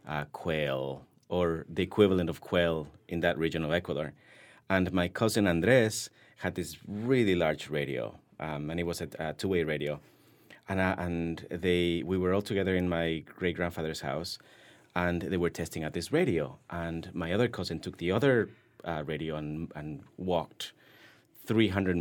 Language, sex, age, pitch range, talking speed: English, male, 30-49, 80-95 Hz, 165 wpm